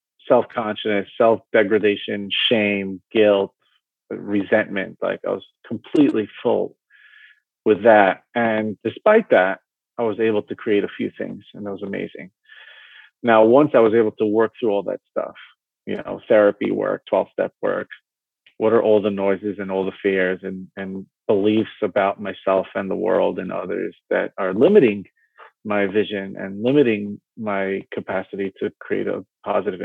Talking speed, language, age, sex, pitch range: 155 wpm, English, 30-49, male, 100-125 Hz